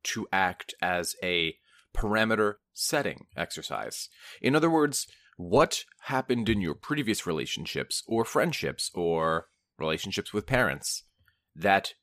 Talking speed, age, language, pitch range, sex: 115 wpm, 30-49, English, 90-115 Hz, male